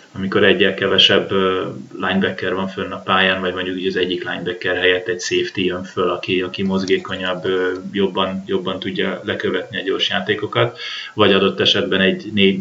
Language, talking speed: Hungarian, 155 wpm